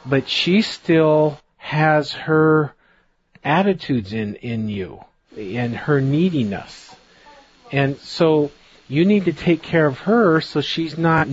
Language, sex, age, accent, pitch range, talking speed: English, male, 40-59, American, 130-165 Hz, 125 wpm